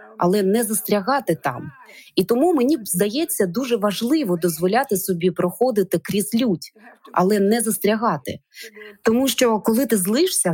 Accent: native